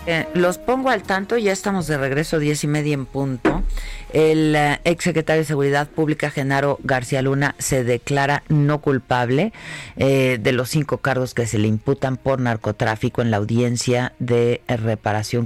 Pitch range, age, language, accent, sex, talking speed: 115-145 Hz, 40-59, Spanish, Mexican, female, 170 wpm